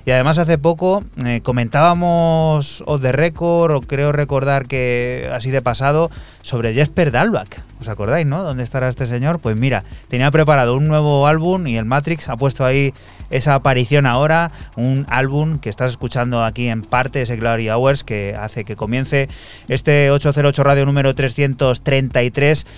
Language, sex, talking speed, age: Spanish, male, 165 wpm, 30-49